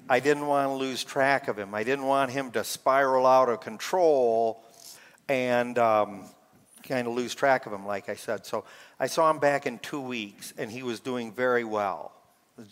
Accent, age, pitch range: American, 50-69, 110-135 Hz